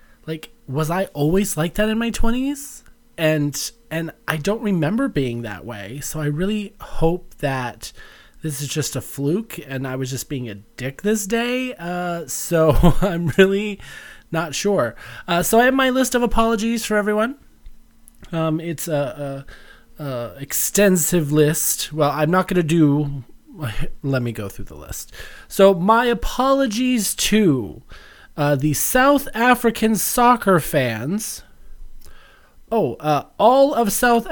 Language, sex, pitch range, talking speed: English, male, 145-215 Hz, 150 wpm